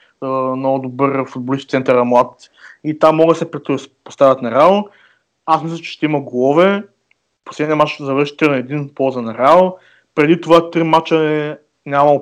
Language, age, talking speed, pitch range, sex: Bulgarian, 20-39, 175 wpm, 135-155 Hz, male